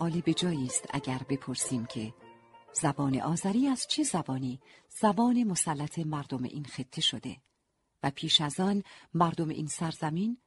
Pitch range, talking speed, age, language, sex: 145-200 Hz, 140 wpm, 40-59, Persian, female